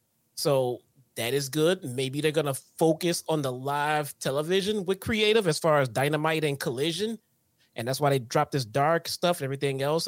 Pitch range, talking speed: 130-180 Hz, 190 wpm